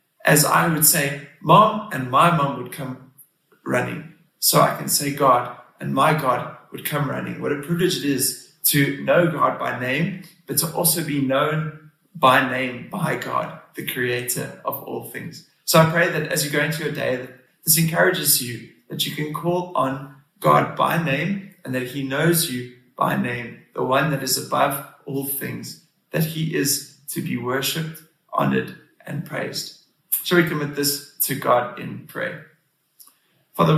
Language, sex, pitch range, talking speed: English, male, 130-165 Hz, 175 wpm